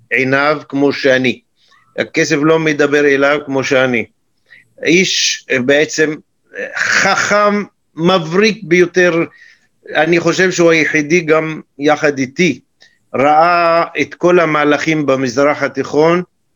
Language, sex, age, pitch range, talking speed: Hebrew, male, 50-69, 145-185 Hz, 100 wpm